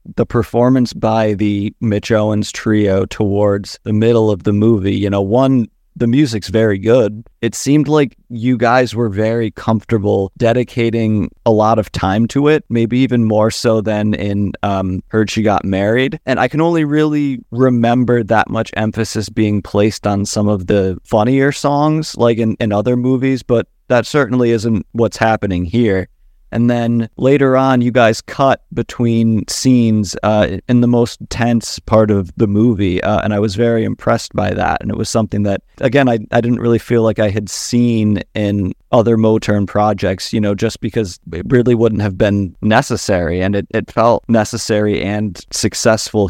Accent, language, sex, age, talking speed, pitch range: American, English, male, 30-49, 180 wpm, 100-120 Hz